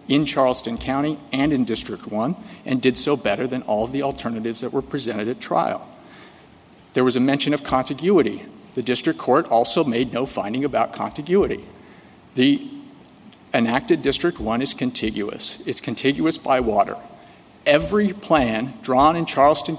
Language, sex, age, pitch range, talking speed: English, male, 50-69, 115-145 Hz, 155 wpm